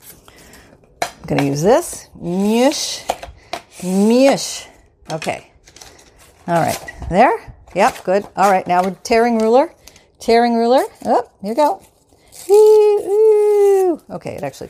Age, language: 40-59, English